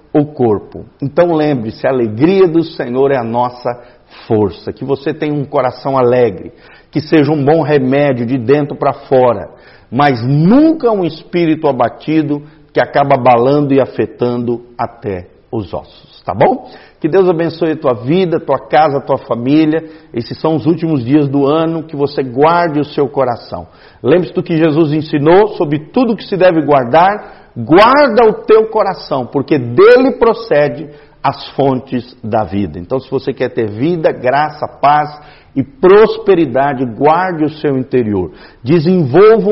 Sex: male